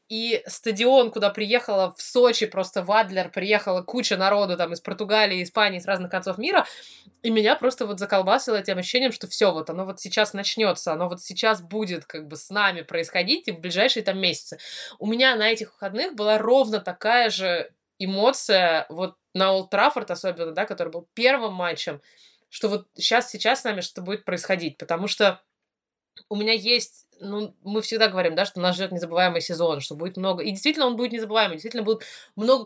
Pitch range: 180-220 Hz